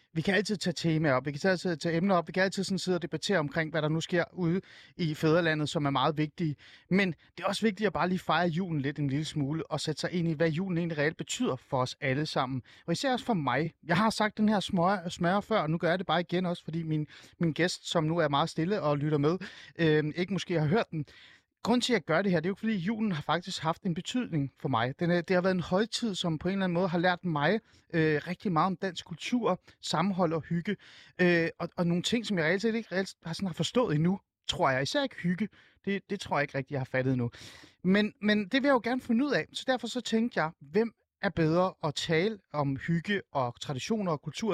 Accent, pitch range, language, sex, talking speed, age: native, 155-195 Hz, Danish, male, 265 wpm, 30-49